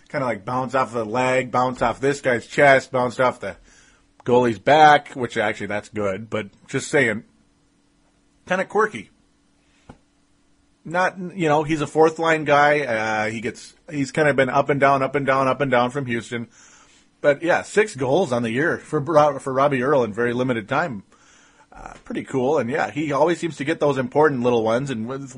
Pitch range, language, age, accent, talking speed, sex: 115-145 Hz, English, 30-49, American, 200 wpm, male